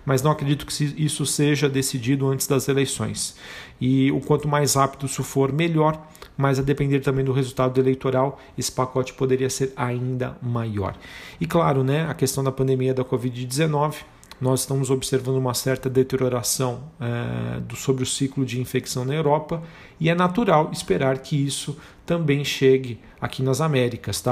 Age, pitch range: 40-59, 130-145 Hz